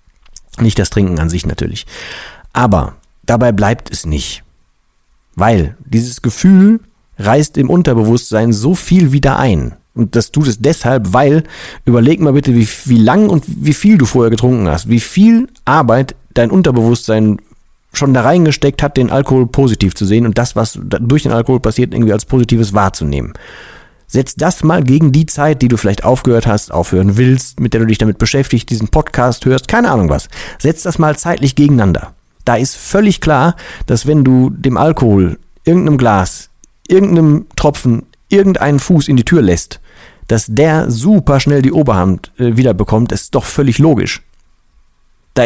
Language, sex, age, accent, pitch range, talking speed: German, male, 40-59, German, 110-145 Hz, 170 wpm